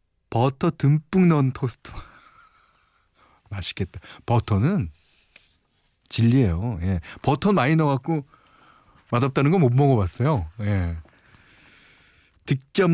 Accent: native